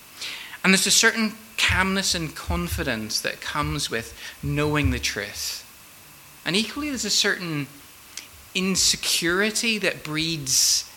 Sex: male